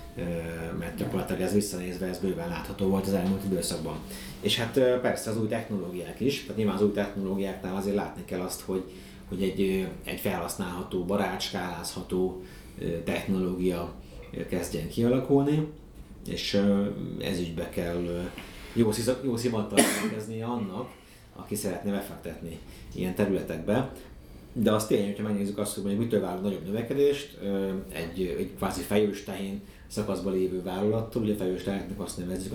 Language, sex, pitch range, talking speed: Hungarian, male, 90-105 Hz, 135 wpm